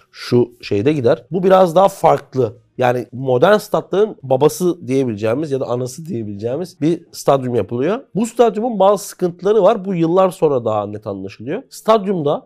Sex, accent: male, native